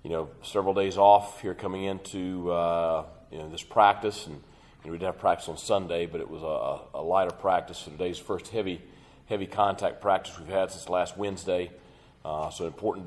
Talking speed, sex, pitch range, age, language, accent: 200 wpm, male, 80-95 Hz, 40-59, English, American